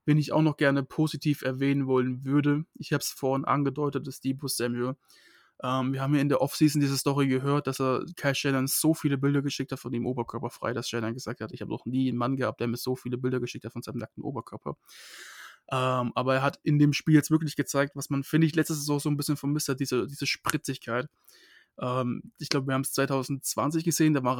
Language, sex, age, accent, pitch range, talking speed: German, male, 20-39, German, 125-145 Hz, 235 wpm